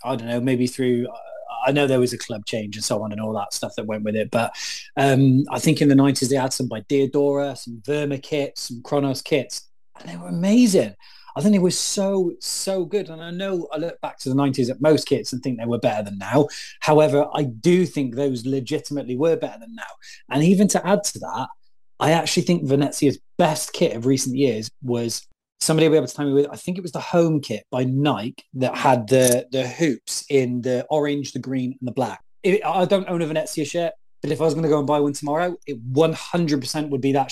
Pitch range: 130-170 Hz